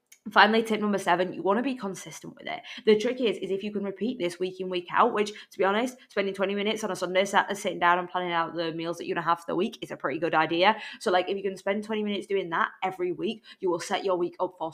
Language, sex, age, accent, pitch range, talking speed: English, female, 20-39, British, 175-210 Hz, 300 wpm